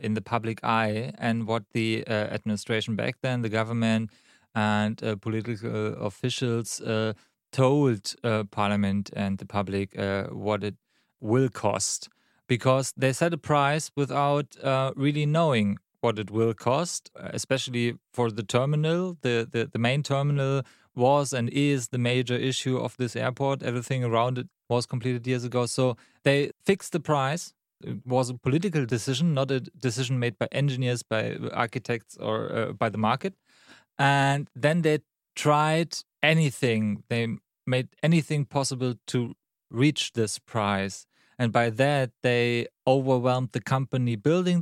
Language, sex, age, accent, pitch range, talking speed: English, male, 30-49, German, 115-140 Hz, 150 wpm